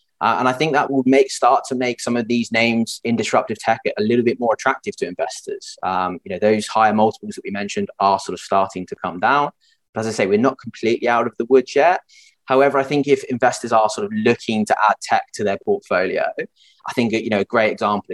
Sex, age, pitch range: male, 20-39, 105-135 Hz